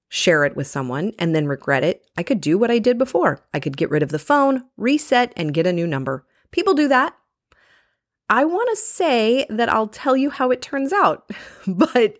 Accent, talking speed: American, 215 wpm